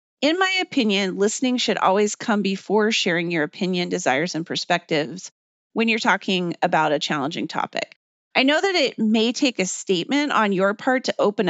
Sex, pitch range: female, 180-250 Hz